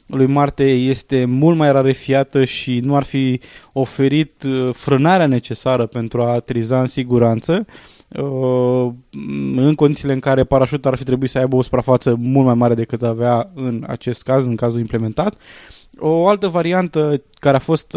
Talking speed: 155 wpm